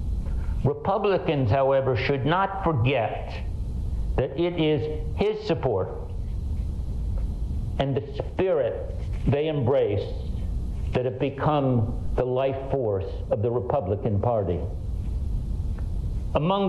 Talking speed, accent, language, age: 95 wpm, American, English, 60-79